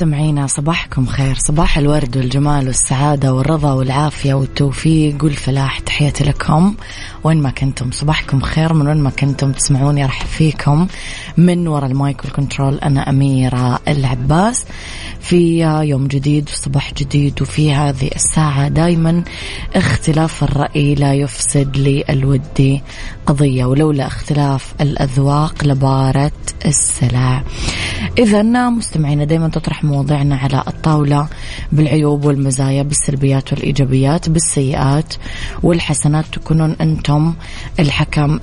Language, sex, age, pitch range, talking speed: English, female, 20-39, 135-155 Hz, 110 wpm